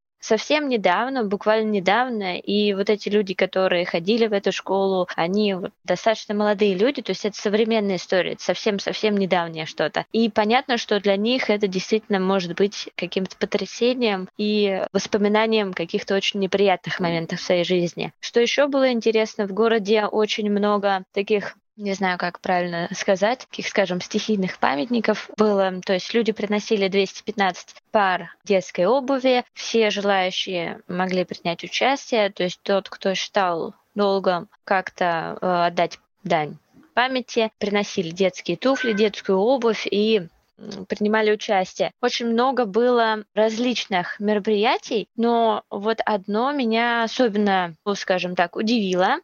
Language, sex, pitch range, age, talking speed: Russian, female, 190-225 Hz, 20-39, 135 wpm